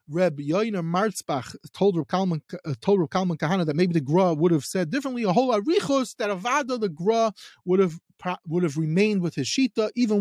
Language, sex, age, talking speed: English, male, 30-49, 190 wpm